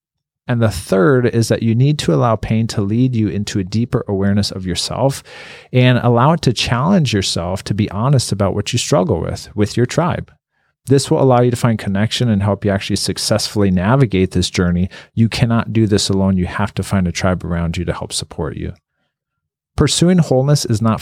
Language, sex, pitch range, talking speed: English, male, 100-125 Hz, 205 wpm